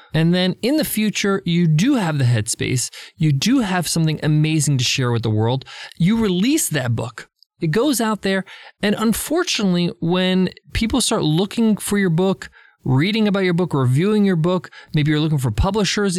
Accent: American